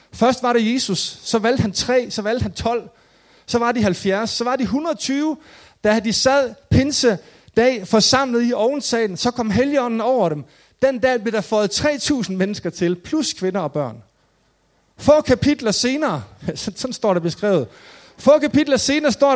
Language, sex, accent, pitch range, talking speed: Danish, male, native, 190-255 Hz, 175 wpm